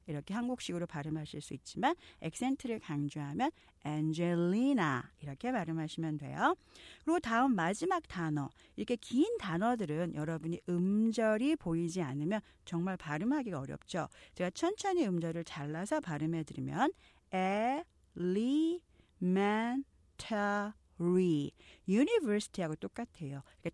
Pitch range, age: 155-250 Hz, 40-59